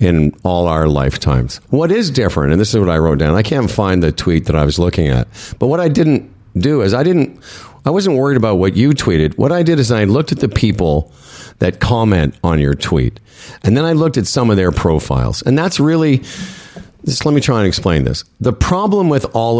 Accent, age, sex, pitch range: American, 50-69, male, 90-140 Hz